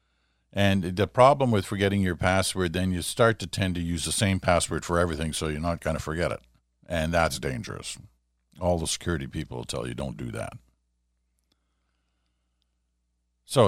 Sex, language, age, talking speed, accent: male, English, 60-79, 175 wpm, American